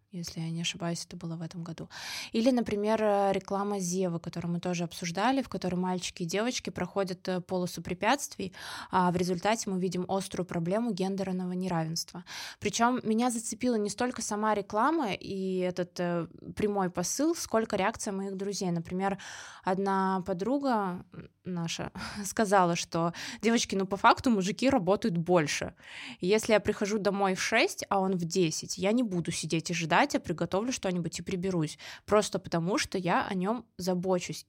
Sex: female